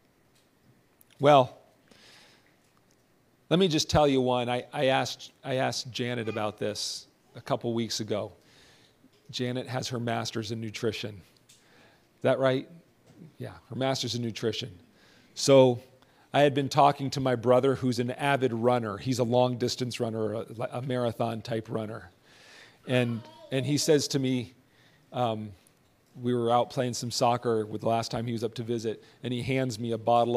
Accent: American